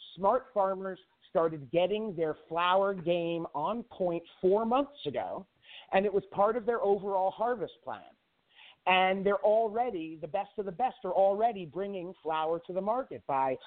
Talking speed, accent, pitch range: 165 wpm, American, 160-205 Hz